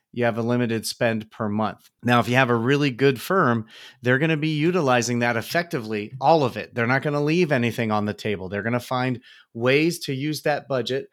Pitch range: 120-155 Hz